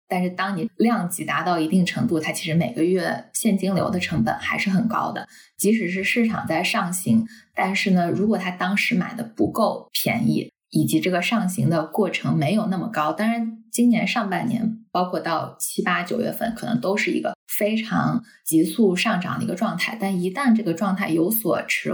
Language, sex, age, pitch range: Chinese, female, 10-29, 175-225 Hz